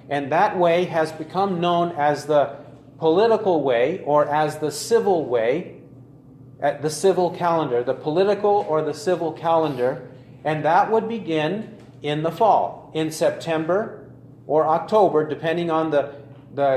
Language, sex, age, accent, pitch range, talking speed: English, male, 40-59, American, 145-185 Hz, 145 wpm